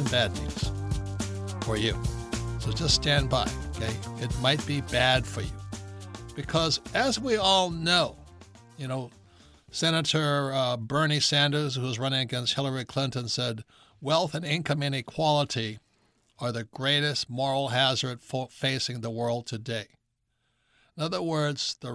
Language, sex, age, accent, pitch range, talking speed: English, male, 60-79, American, 120-155 Hz, 140 wpm